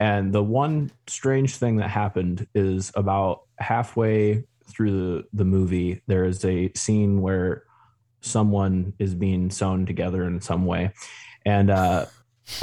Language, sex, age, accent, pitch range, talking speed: English, male, 20-39, American, 95-110 Hz, 140 wpm